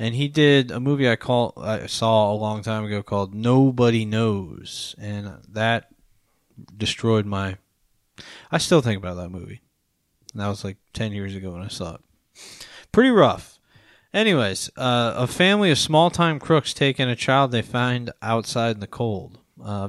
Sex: male